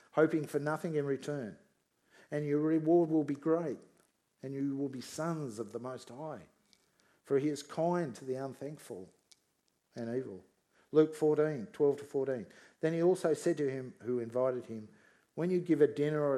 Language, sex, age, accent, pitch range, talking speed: English, male, 50-69, Australian, 115-150 Hz, 170 wpm